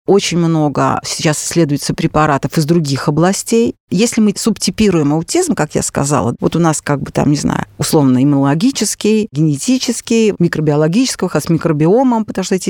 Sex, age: female, 40-59